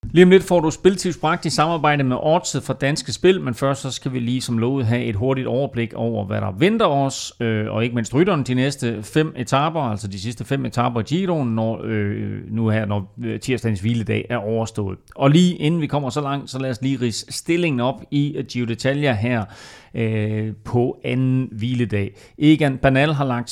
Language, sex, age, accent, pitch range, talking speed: Danish, male, 30-49, native, 110-140 Hz, 195 wpm